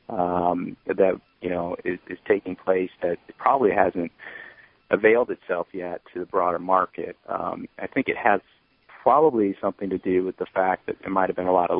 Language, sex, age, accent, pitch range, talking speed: English, male, 40-59, American, 90-100 Hz, 195 wpm